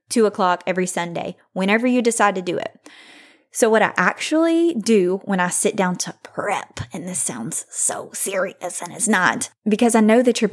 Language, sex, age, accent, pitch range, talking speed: English, female, 20-39, American, 180-235 Hz, 195 wpm